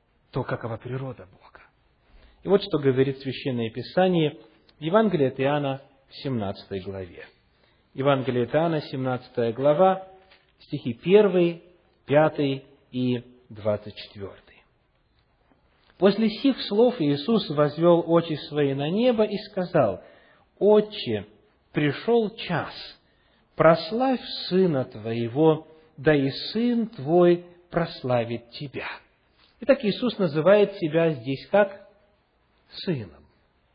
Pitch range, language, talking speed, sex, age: 135-200 Hz, English, 100 wpm, male, 40-59